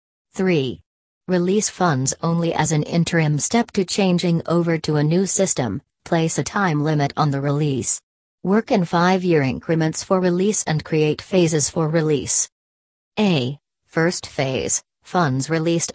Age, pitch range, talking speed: 40-59, 140-180 Hz, 145 wpm